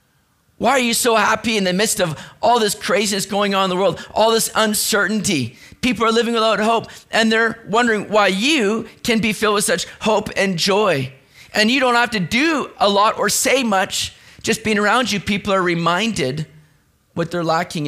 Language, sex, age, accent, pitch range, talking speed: English, male, 30-49, American, 175-225 Hz, 200 wpm